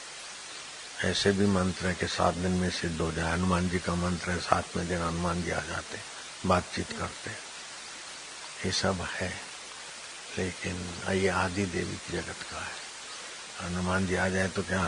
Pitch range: 85-95 Hz